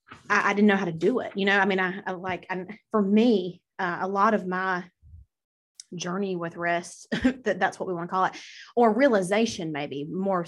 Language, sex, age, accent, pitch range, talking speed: English, female, 20-39, American, 170-200 Hz, 220 wpm